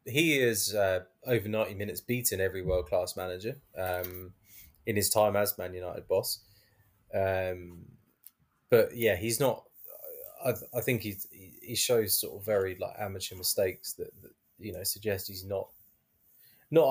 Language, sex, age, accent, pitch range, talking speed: English, male, 20-39, British, 95-120 Hz, 155 wpm